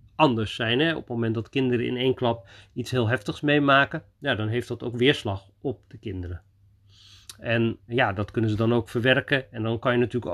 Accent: Dutch